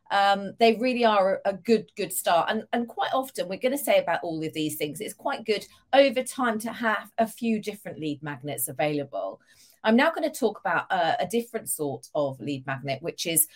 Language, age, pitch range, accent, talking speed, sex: English, 40-59, 165-230 Hz, British, 215 wpm, female